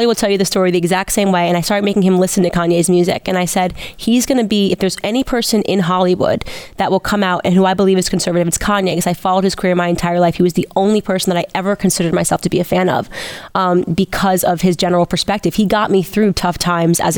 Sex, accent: female, American